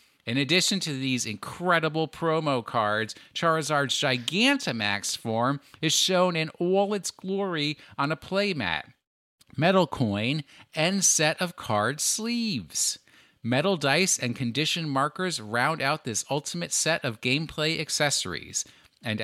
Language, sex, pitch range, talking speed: English, male, 120-160 Hz, 125 wpm